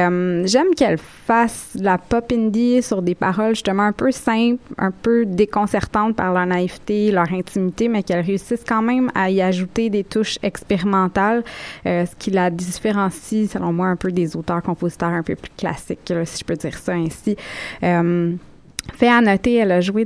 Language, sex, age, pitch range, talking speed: French, female, 20-39, 175-225 Hz, 185 wpm